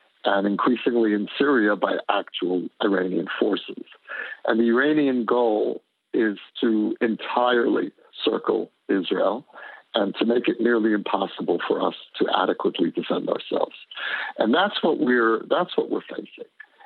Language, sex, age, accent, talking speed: English, male, 60-79, American, 125 wpm